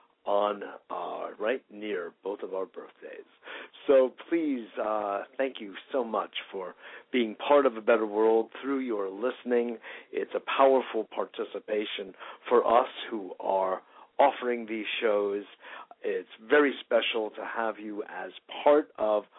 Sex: male